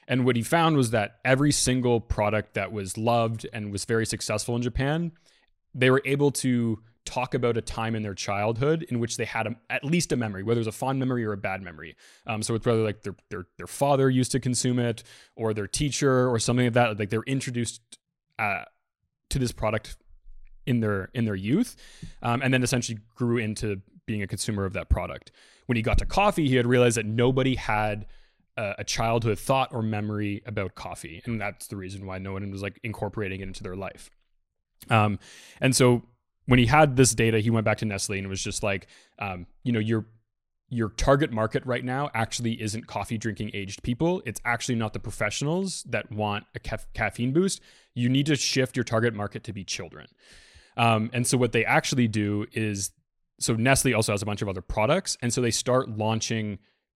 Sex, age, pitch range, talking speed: male, 20-39, 105-125 Hz, 210 wpm